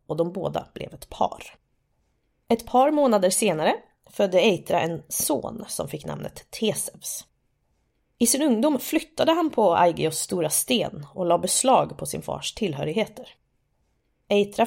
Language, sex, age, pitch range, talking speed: Swedish, female, 20-39, 170-245 Hz, 145 wpm